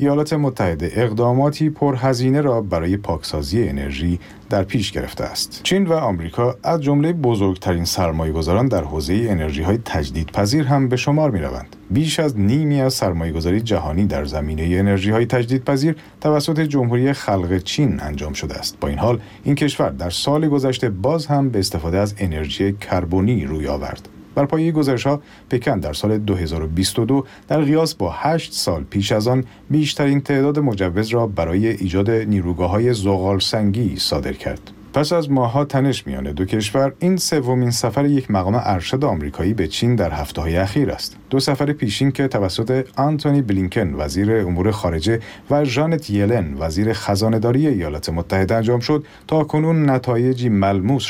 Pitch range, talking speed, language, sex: 95-140 Hz, 155 wpm, Persian, male